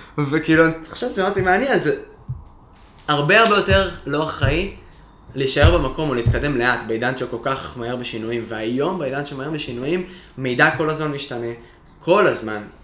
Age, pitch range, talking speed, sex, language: 20-39, 115-150 Hz, 160 wpm, male, Hebrew